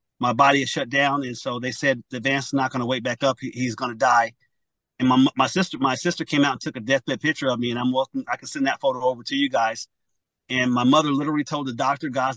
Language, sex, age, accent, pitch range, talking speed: English, male, 40-59, American, 130-145 Hz, 275 wpm